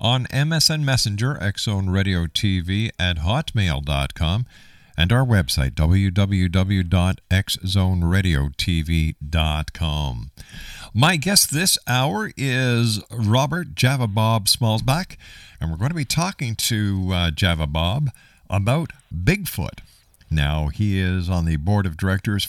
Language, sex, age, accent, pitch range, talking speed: English, male, 50-69, American, 85-115 Hz, 110 wpm